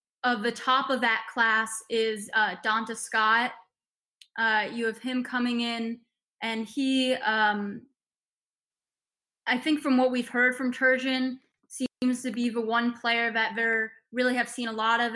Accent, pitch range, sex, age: American, 220-245 Hz, female, 20-39